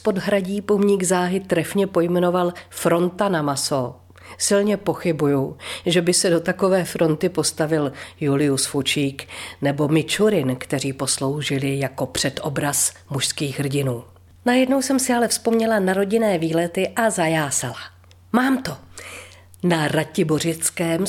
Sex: female